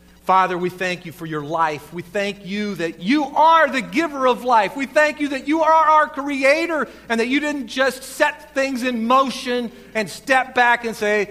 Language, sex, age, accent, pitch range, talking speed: English, male, 40-59, American, 165-275 Hz, 205 wpm